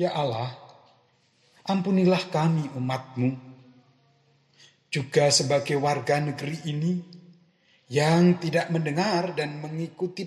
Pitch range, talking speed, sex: 125-170 Hz, 90 wpm, male